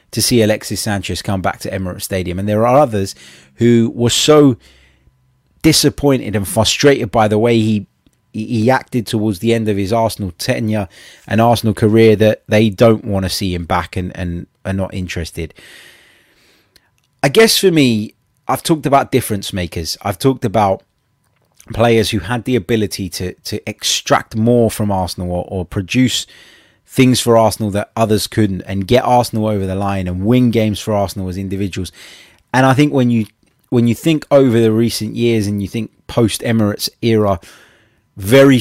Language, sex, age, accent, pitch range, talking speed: English, male, 30-49, British, 95-120 Hz, 175 wpm